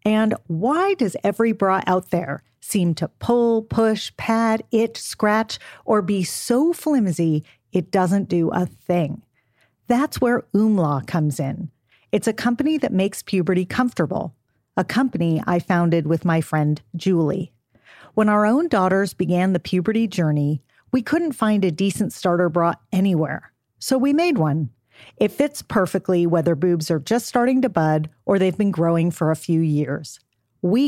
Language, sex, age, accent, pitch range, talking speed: English, female, 40-59, American, 160-220 Hz, 160 wpm